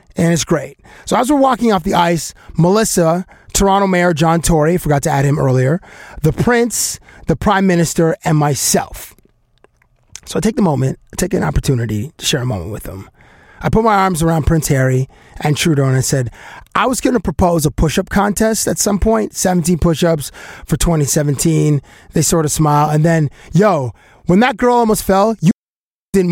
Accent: American